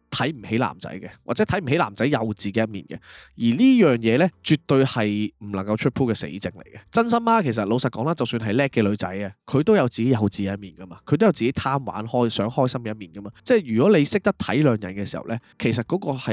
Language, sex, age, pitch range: Chinese, male, 20-39, 105-150 Hz